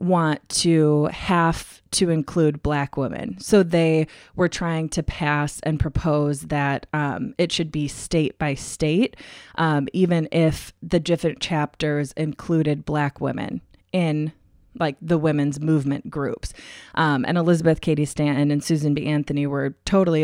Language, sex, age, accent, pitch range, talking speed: English, female, 20-39, American, 150-180 Hz, 145 wpm